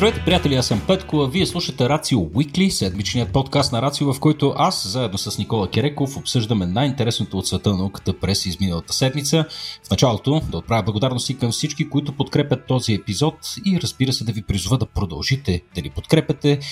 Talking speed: 185 wpm